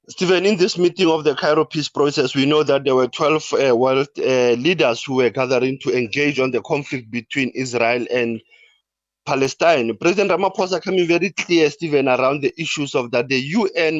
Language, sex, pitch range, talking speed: English, male, 130-170 Hz, 190 wpm